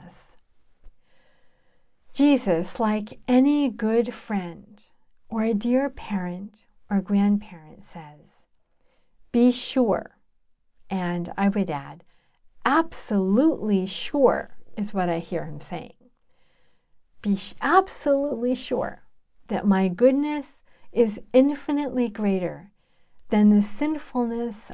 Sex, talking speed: female, 90 wpm